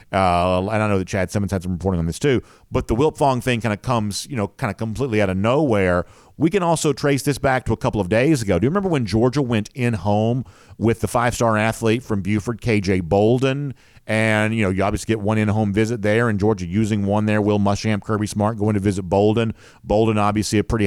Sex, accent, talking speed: male, American, 240 wpm